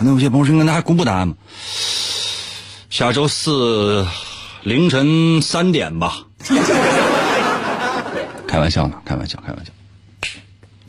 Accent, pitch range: native, 95-135 Hz